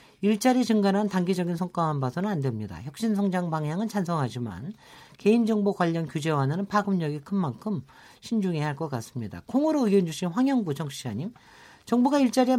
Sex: male